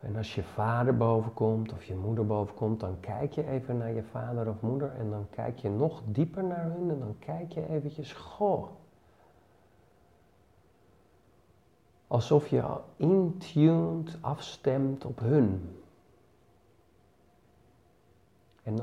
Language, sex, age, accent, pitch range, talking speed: Dutch, male, 50-69, Dutch, 100-125 Hz, 125 wpm